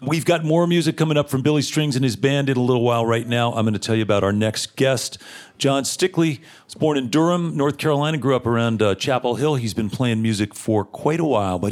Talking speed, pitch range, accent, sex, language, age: 255 wpm, 95-130 Hz, American, male, English, 40-59